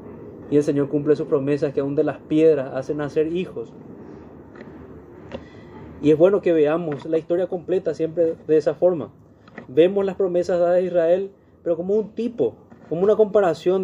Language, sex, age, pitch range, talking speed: Spanish, male, 30-49, 125-170 Hz, 170 wpm